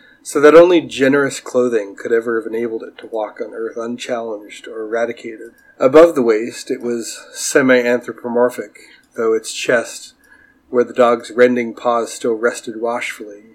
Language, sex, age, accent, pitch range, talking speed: English, male, 30-49, American, 115-130 Hz, 150 wpm